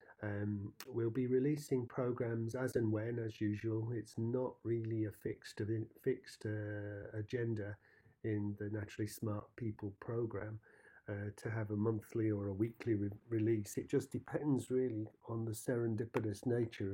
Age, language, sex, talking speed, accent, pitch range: 40-59, English, male, 155 wpm, British, 105-120 Hz